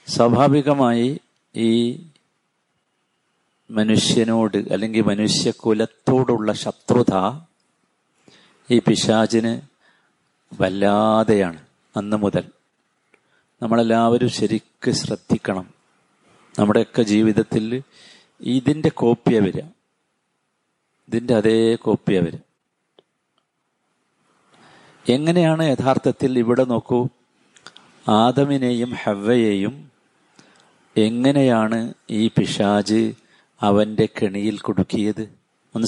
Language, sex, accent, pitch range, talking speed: Malayalam, male, native, 105-125 Hz, 60 wpm